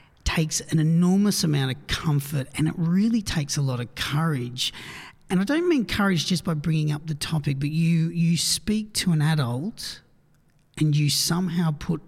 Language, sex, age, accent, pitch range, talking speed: English, male, 40-59, Australian, 140-170 Hz, 180 wpm